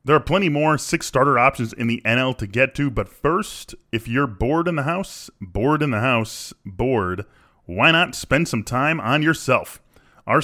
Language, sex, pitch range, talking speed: English, male, 110-145 Hz, 195 wpm